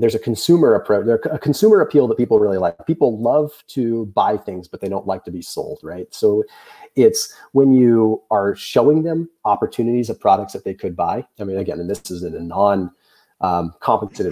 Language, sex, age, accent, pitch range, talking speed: English, male, 30-49, American, 95-135 Hz, 195 wpm